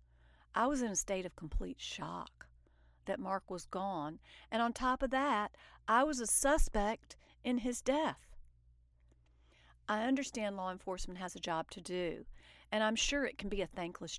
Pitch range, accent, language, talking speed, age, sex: 150-225 Hz, American, English, 175 wpm, 50-69, female